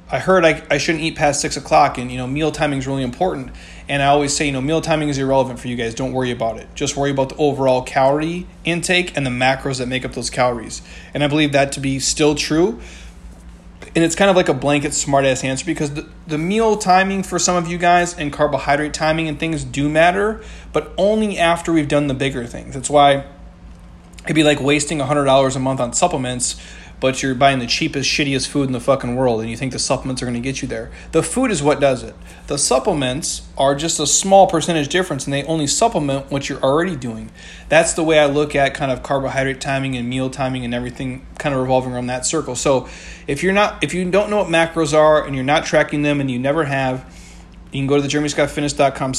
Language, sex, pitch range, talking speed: English, male, 130-160 Hz, 240 wpm